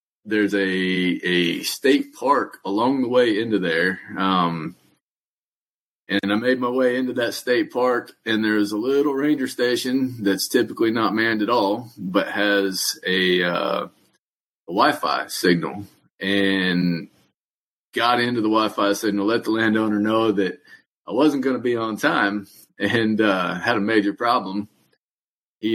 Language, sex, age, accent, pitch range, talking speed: English, male, 30-49, American, 100-130 Hz, 145 wpm